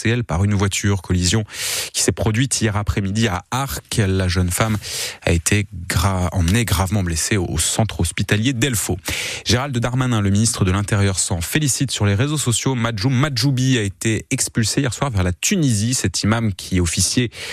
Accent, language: French, French